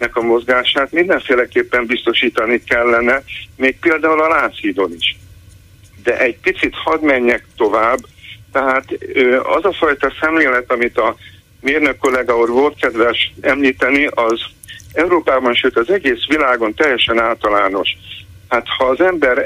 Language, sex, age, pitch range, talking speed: Hungarian, male, 60-79, 115-185 Hz, 125 wpm